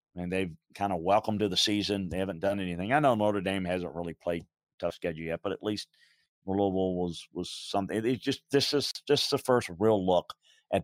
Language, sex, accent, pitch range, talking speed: English, male, American, 95-110 Hz, 215 wpm